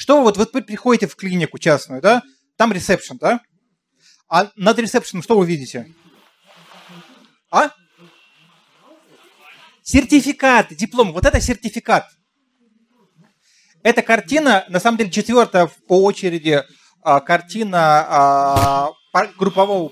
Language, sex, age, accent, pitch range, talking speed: Russian, male, 30-49, native, 170-225 Hz, 110 wpm